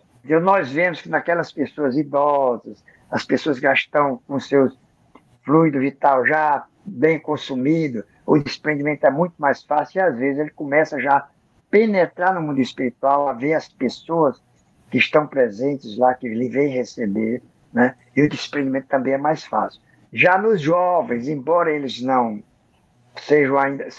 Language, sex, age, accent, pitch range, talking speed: Portuguese, male, 60-79, Brazilian, 130-155 Hz, 160 wpm